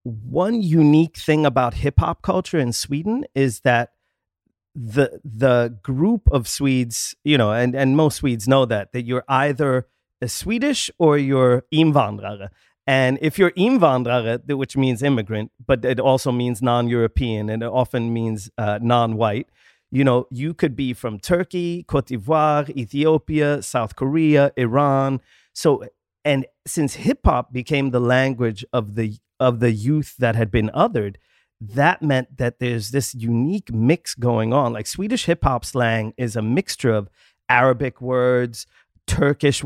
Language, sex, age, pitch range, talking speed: English, male, 30-49, 115-145 Hz, 155 wpm